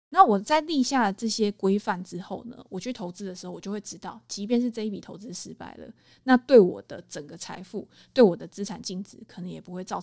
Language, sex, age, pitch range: Chinese, female, 20-39, 195-245 Hz